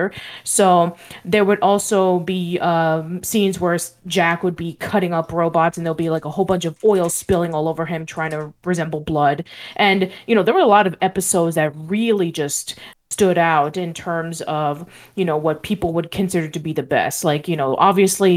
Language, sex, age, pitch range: English, female, 20-39, 160-200 Hz